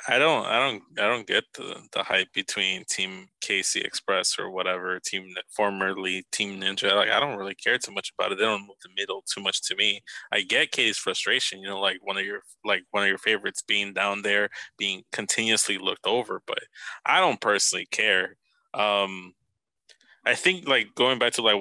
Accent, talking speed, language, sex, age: American, 205 wpm, English, male, 20-39